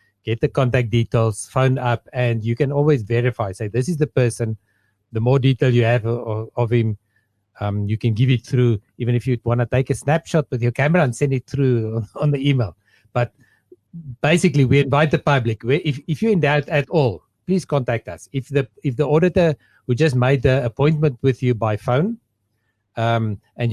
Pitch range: 115-145 Hz